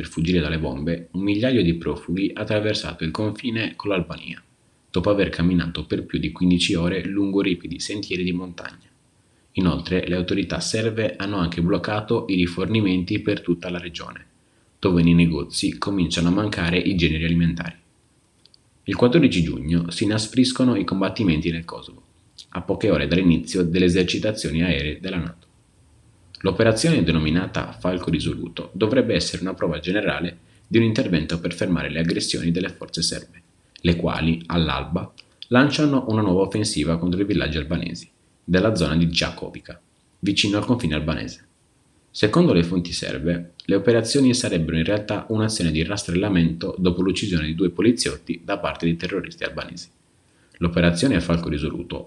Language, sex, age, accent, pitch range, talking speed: Italian, male, 30-49, native, 85-100 Hz, 150 wpm